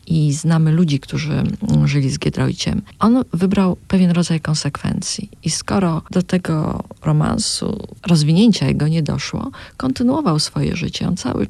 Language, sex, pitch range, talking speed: Polish, female, 150-180 Hz, 135 wpm